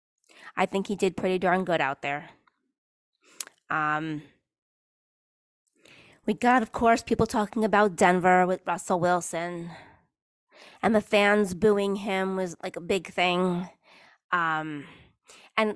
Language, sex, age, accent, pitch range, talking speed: English, female, 20-39, American, 175-225 Hz, 125 wpm